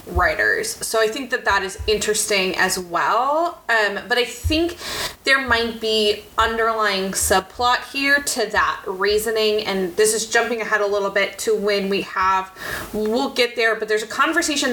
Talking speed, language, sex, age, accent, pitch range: 170 wpm, English, female, 20-39, American, 205-255 Hz